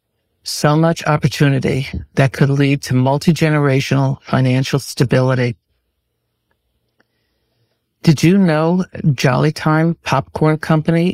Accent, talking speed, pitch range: American, 90 wpm, 135-160 Hz